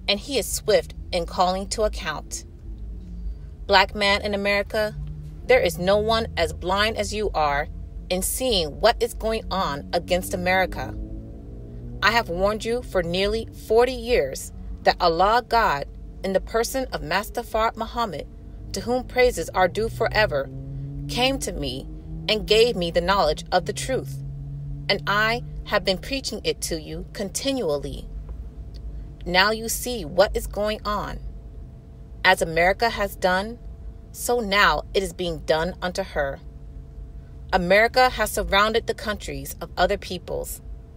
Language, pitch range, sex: English, 135-220 Hz, female